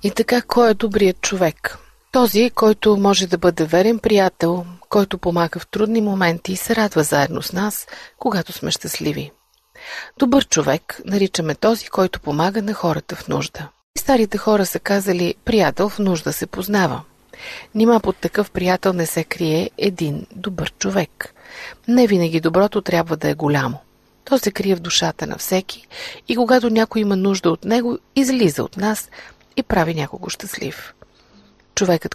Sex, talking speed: female, 160 wpm